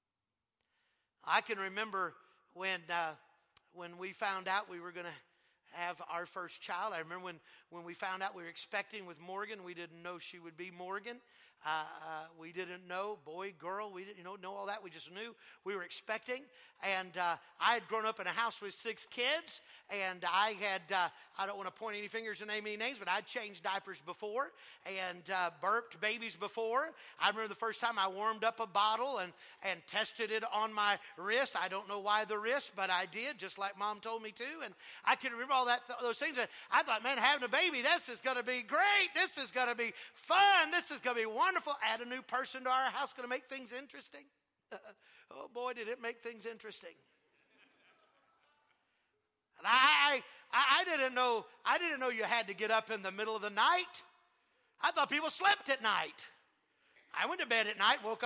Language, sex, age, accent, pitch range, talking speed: English, male, 50-69, American, 190-260 Hz, 215 wpm